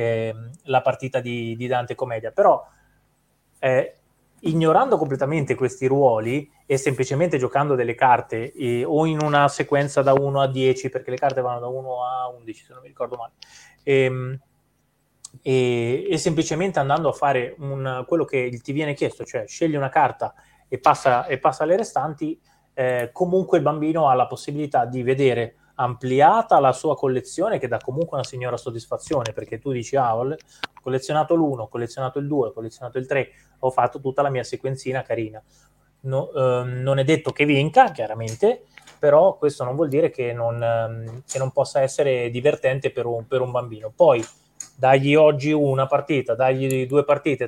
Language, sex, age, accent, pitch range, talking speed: Italian, male, 20-39, native, 125-145 Hz, 170 wpm